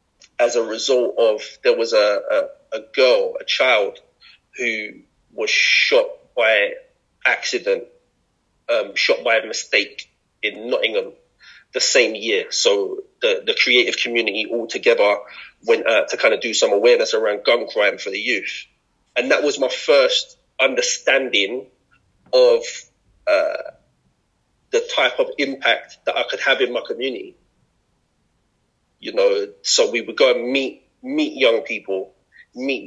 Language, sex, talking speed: English, male, 145 wpm